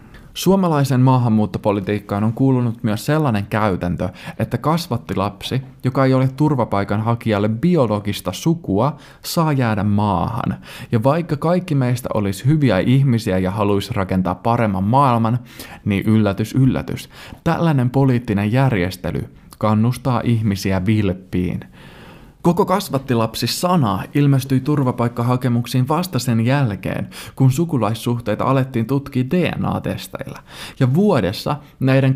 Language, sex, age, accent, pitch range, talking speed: Finnish, male, 20-39, native, 105-140 Hz, 105 wpm